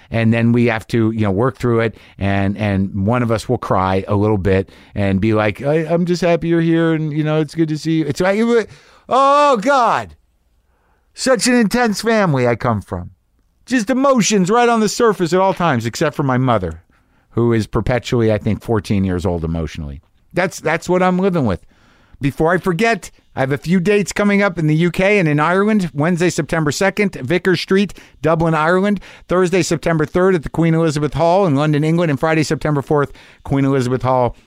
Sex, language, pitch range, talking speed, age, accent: male, English, 115-185 Hz, 205 wpm, 50-69, American